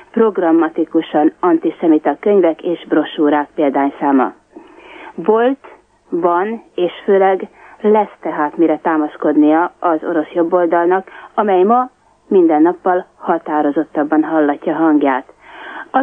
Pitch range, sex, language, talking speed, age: 165-220 Hz, female, Hungarian, 95 wpm, 30-49